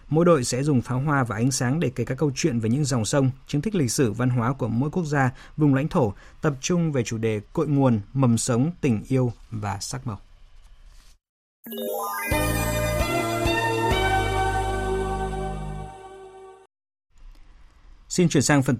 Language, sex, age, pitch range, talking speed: Vietnamese, male, 20-39, 120-160 Hz, 155 wpm